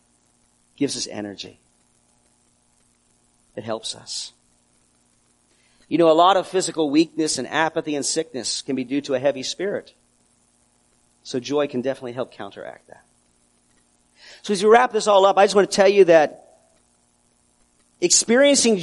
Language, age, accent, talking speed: English, 50-69, American, 145 wpm